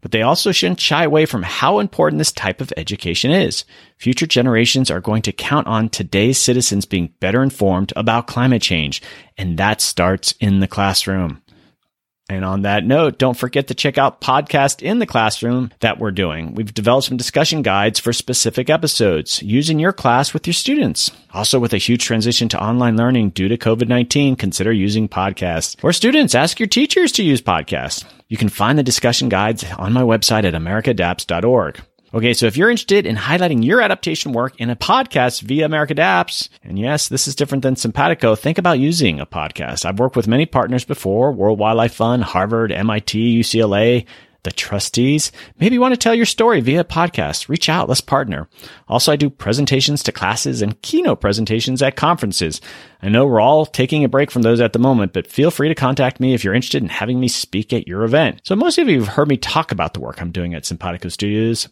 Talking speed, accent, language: 200 wpm, American, English